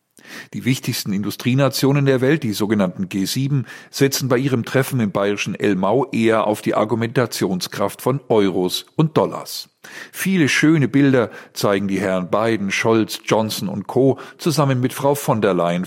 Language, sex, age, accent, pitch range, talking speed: German, male, 50-69, German, 105-140 Hz, 150 wpm